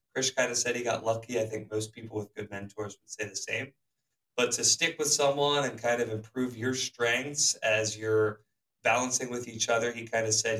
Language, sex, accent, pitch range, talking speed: English, male, American, 110-125 Hz, 220 wpm